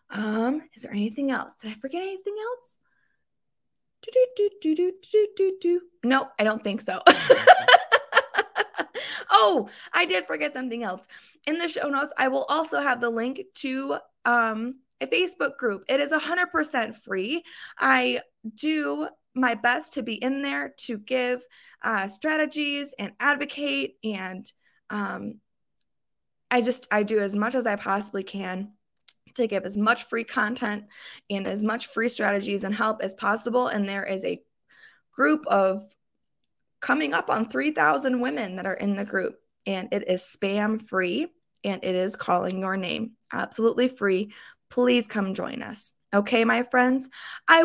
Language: English